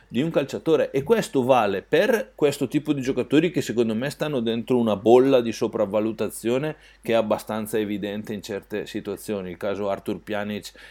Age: 40-59